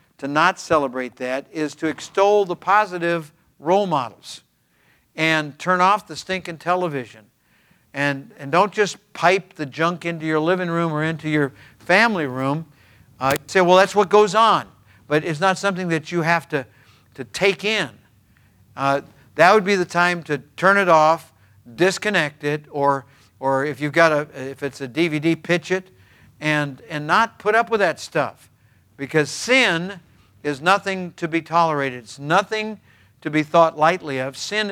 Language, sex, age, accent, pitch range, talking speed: English, male, 60-79, American, 130-175 Hz, 170 wpm